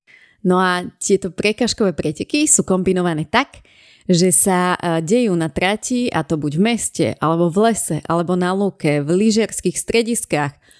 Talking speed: 150 wpm